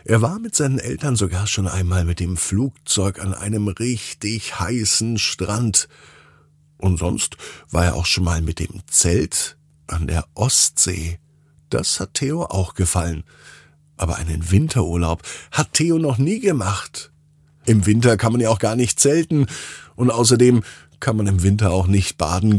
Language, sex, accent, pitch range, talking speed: German, male, German, 90-125 Hz, 160 wpm